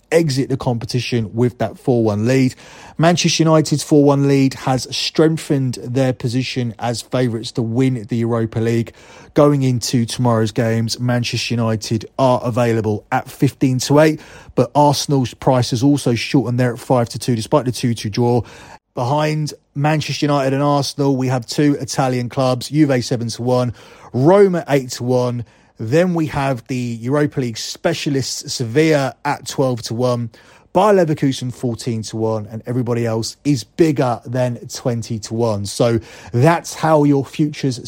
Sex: male